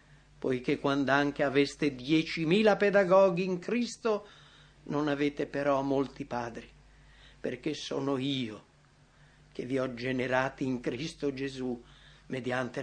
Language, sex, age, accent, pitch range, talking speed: English, male, 60-79, Italian, 125-180 Hz, 110 wpm